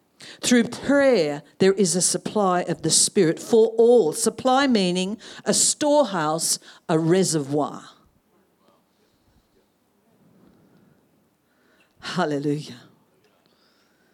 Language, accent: English, Australian